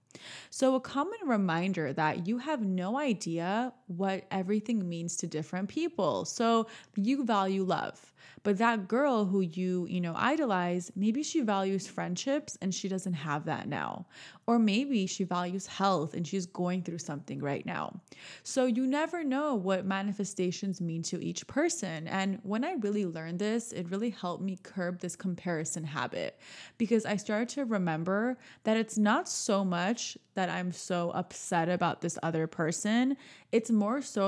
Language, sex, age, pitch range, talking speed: English, female, 20-39, 175-220 Hz, 165 wpm